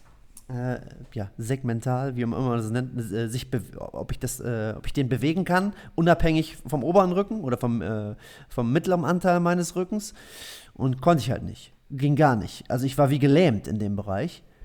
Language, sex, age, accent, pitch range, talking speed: German, male, 30-49, German, 120-150 Hz, 195 wpm